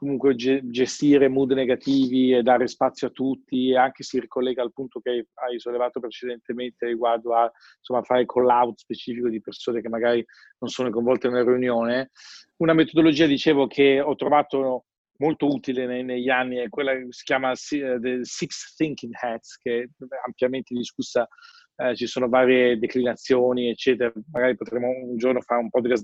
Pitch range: 120-135 Hz